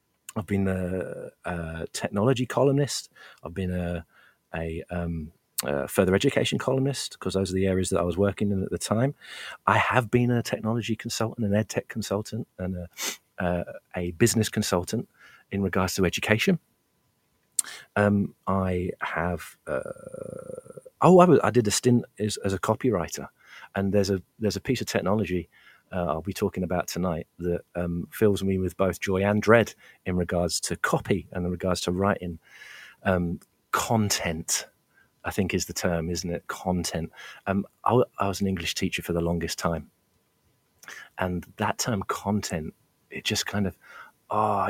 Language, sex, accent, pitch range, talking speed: English, male, British, 90-110 Hz, 170 wpm